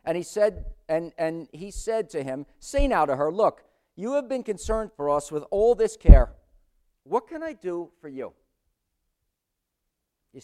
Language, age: English, 50-69